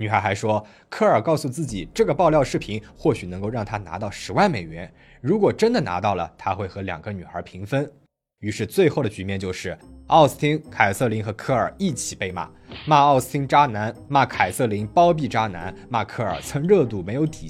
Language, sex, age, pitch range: Chinese, male, 20-39, 105-150 Hz